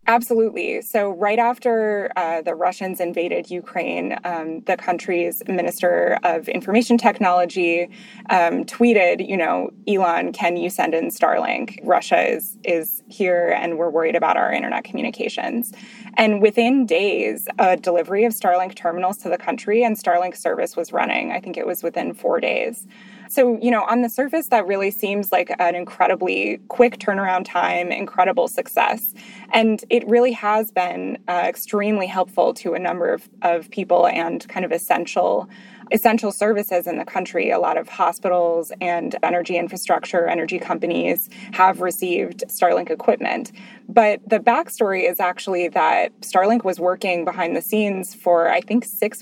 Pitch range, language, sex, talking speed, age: 175-230 Hz, English, female, 155 wpm, 20-39